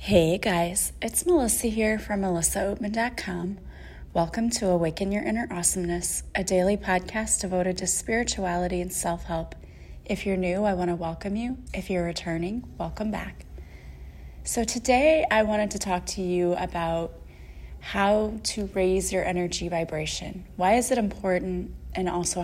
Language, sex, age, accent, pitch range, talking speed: English, female, 20-39, American, 170-200 Hz, 145 wpm